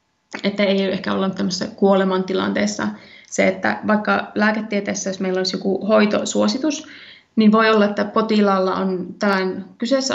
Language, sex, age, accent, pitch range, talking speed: Finnish, female, 20-39, native, 185-210 Hz, 130 wpm